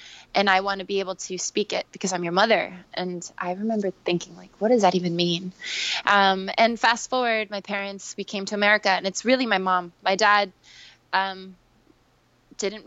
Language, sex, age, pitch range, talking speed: English, female, 20-39, 180-200 Hz, 195 wpm